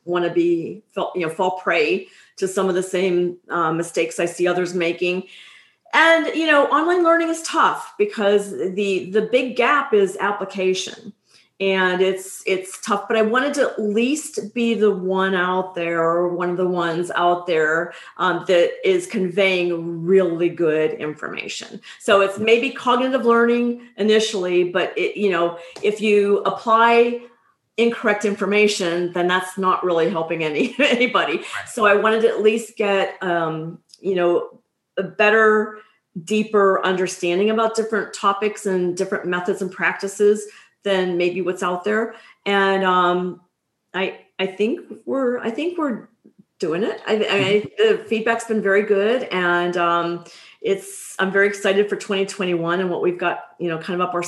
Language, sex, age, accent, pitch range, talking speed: English, female, 40-59, American, 180-225 Hz, 160 wpm